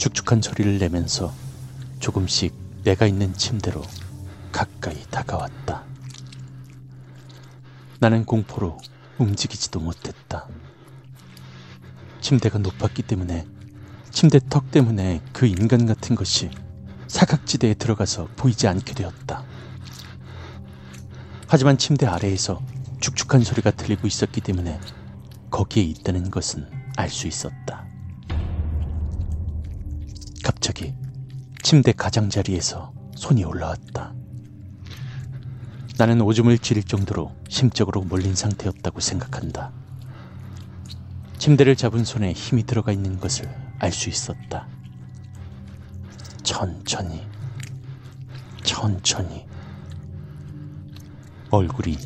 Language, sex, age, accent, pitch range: Korean, male, 40-59, native, 95-130 Hz